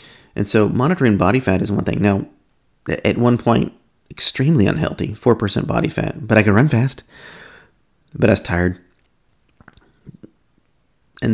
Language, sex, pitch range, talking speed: English, male, 95-115 Hz, 145 wpm